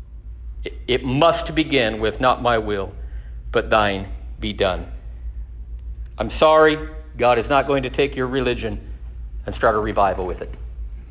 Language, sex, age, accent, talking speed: English, male, 50-69, American, 145 wpm